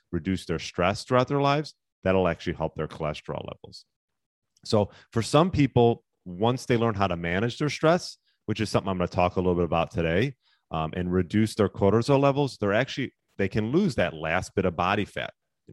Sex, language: male, English